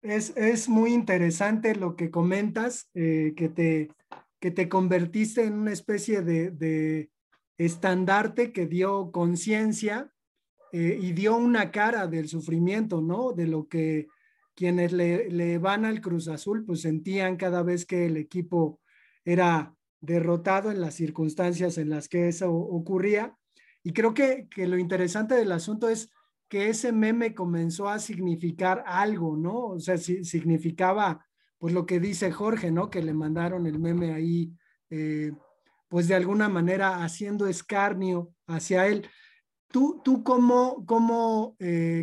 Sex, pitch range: male, 170-215 Hz